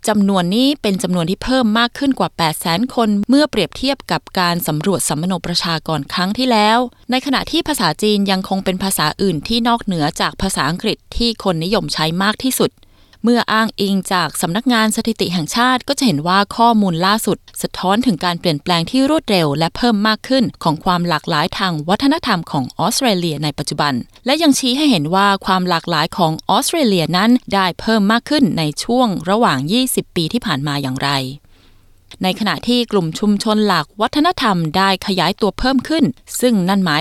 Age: 20-39